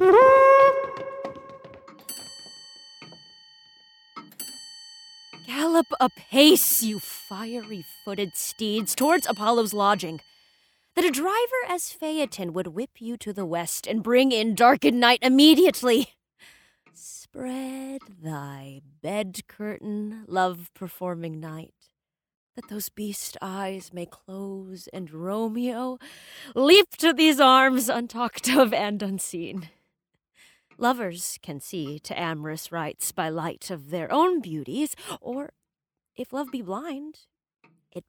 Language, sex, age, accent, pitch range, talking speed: English, female, 20-39, American, 175-270 Hz, 100 wpm